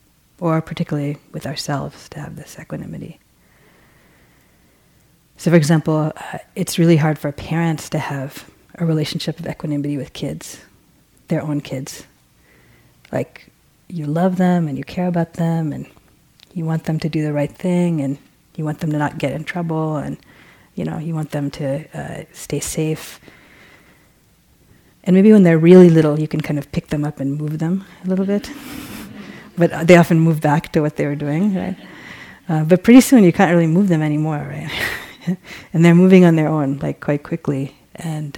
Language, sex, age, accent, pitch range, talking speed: English, female, 30-49, American, 150-175 Hz, 185 wpm